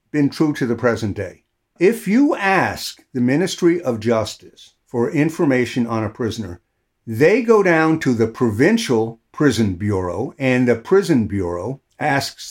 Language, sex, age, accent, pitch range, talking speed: English, male, 60-79, American, 105-130 Hz, 150 wpm